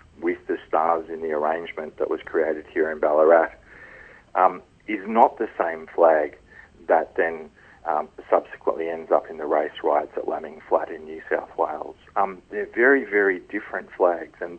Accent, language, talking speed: Australian, English, 175 wpm